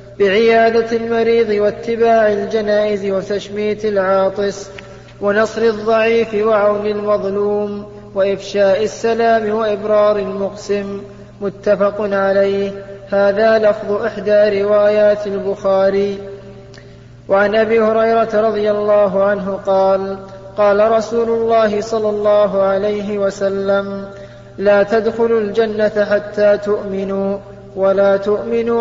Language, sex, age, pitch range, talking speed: Arabic, male, 20-39, 200-215 Hz, 85 wpm